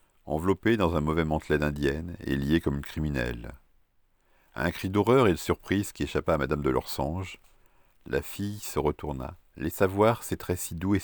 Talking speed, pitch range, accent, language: 190 wpm, 75-90 Hz, French, French